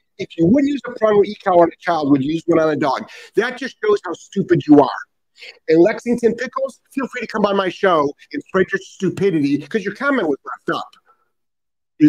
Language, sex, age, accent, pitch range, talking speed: English, male, 50-69, American, 150-250 Hz, 225 wpm